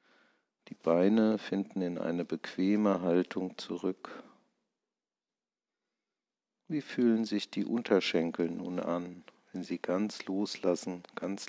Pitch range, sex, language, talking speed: 90-110 Hz, male, German, 105 wpm